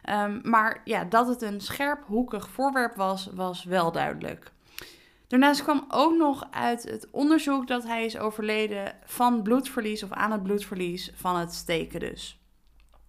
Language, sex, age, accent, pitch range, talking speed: Dutch, female, 20-39, Dutch, 200-265 Hz, 150 wpm